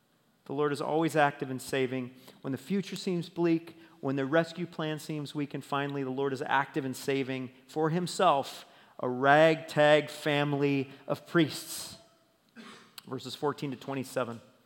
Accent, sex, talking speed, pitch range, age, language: American, male, 145 wpm, 160-230 Hz, 40-59, English